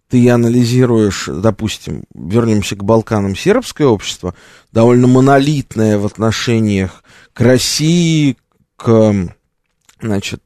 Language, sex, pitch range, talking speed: Russian, male, 105-140 Hz, 90 wpm